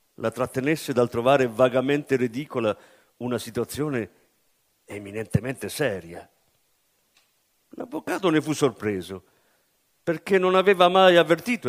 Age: 50-69